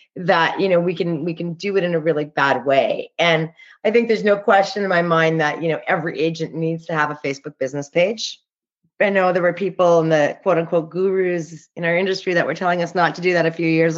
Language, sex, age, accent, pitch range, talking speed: English, female, 30-49, American, 165-235 Hz, 255 wpm